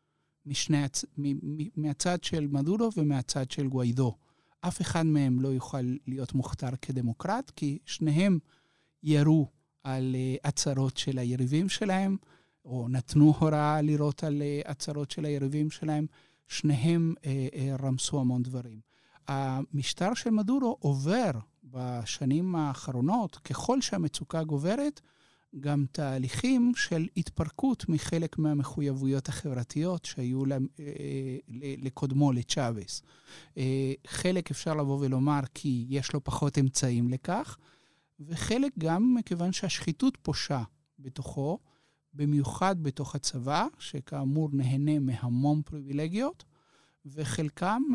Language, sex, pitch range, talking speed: Hebrew, male, 135-165 Hz, 100 wpm